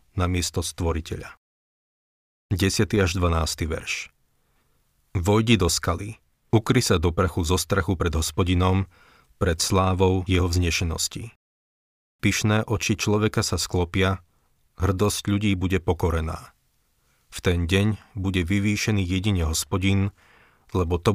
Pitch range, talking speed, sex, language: 85-100 Hz, 110 wpm, male, Slovak